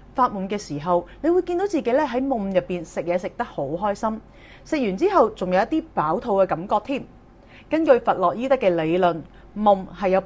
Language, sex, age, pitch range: Chinese, female, 30-49, 175-270 Hz